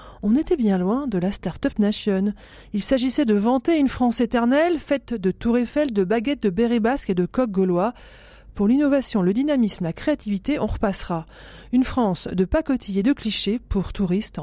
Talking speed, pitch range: 185 wpm, 190-270 Hz